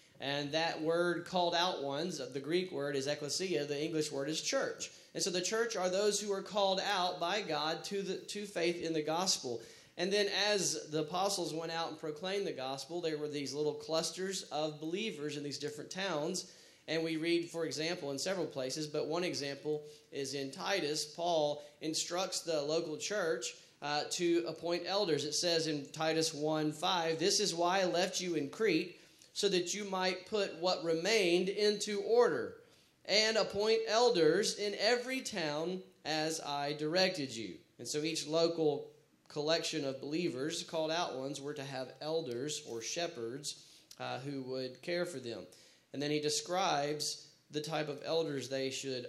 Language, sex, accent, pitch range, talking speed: English, male, American, 145-175 Hz, 175 wpm